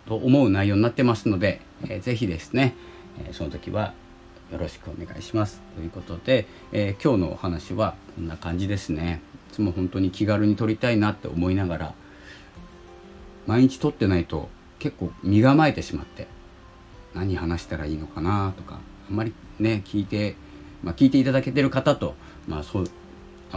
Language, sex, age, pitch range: Japanese, male, 40-59, 85-105 Hz